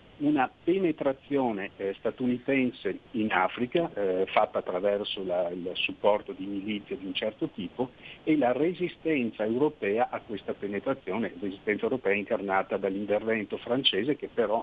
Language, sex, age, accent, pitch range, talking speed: Italian, male, 50-69, native, 105-140 Hz, 130 wpm